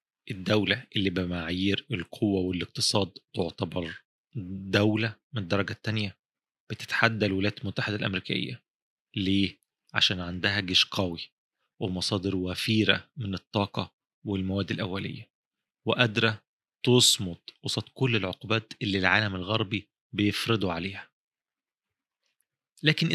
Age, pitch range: 30-49, 100-120 Hz